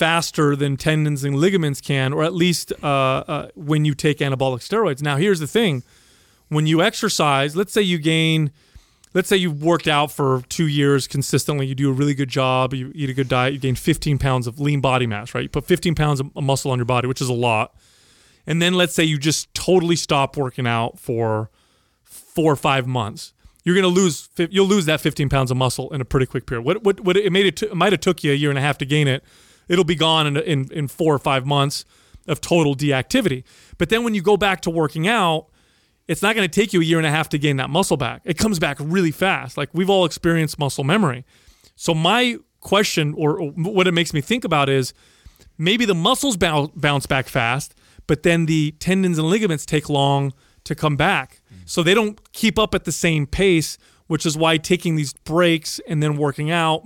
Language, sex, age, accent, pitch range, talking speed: English, male, 30-49, American, 140-175 Hz, 225 wpm